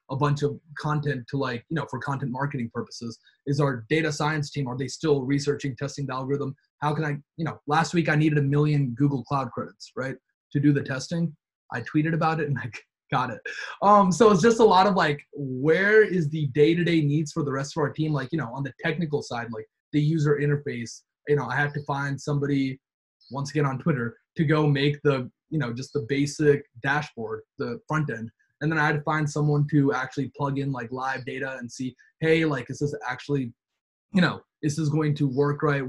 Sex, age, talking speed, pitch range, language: male, 20-39, 225 wpm, 130-150 Hz, English